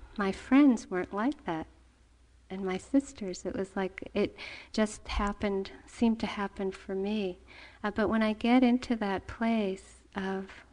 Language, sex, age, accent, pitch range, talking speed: English, female, 40-59, American, 175-215 Hz, 155 wpm